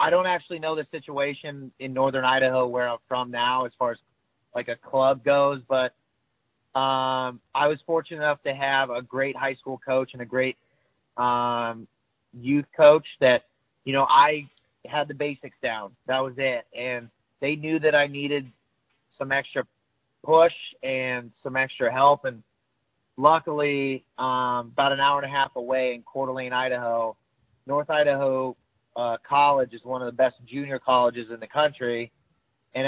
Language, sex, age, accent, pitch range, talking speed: English, male, 30-49, American, 120-135 Hz, 170 wpm